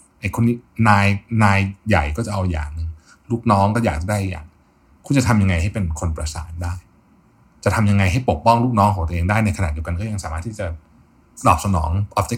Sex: male